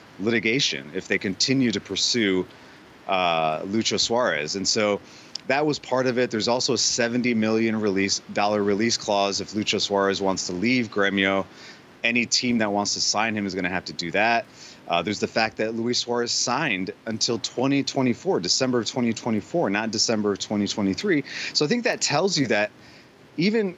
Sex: male